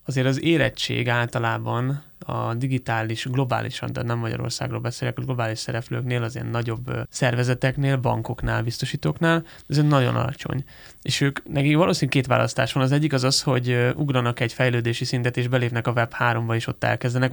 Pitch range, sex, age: 120-140 Hz, male, 20-39